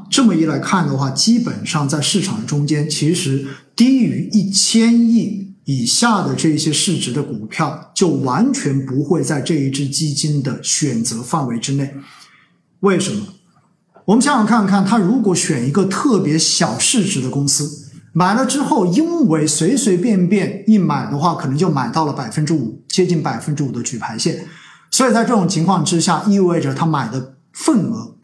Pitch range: 150-210 Hz